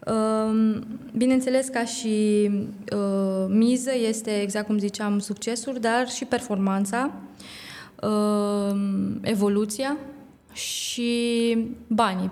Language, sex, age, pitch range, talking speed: Romanian, female, 20-39, 195-220 Hz, 75 wpm